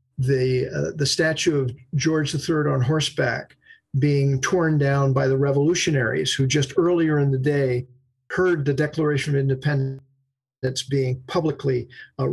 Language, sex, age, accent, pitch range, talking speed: English, male, 50-69, American, 135-165 Hz, 145 wpm